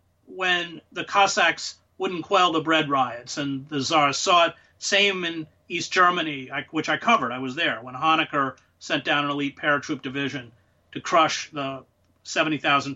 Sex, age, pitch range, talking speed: male, 40-59, 145-195 Hz, 160 wpm